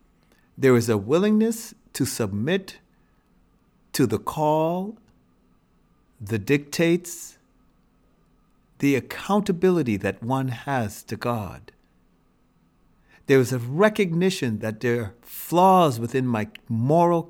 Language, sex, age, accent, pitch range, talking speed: English, male, 50-69, American, 110-165 Hz, 100 wpm